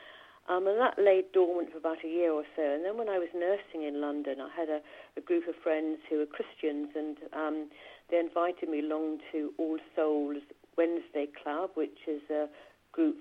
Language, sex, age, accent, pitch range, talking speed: English, female, 50-69, British, 155-205 Hz, 200 wpm